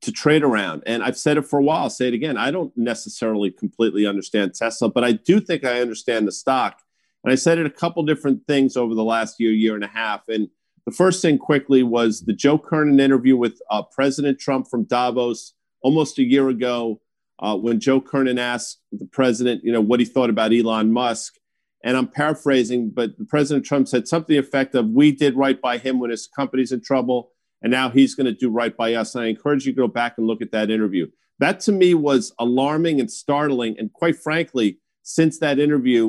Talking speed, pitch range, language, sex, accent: 220 wpm, 115-140 Hz, English, male, American